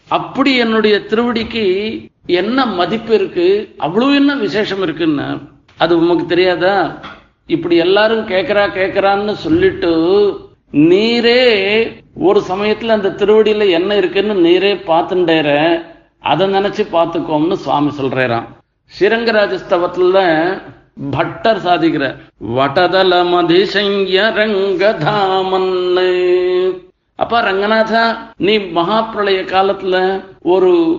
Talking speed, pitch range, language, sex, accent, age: 85 wpm, 170-220 Hz, Tamil, male, native, 50-69